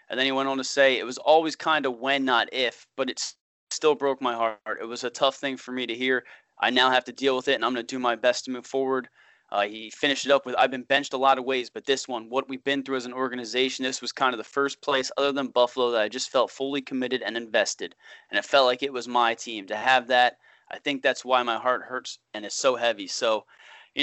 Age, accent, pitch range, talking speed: 20-39, American, 125-145 Hz, 280 wpm